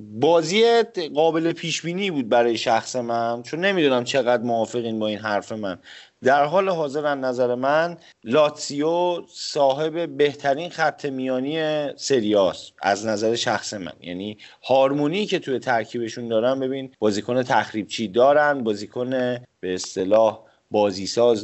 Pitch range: 115-160 Hz